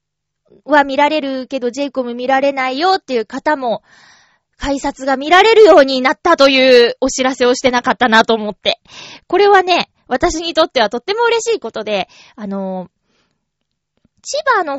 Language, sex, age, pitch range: Japanese, female, 20-39, 235-325 Hz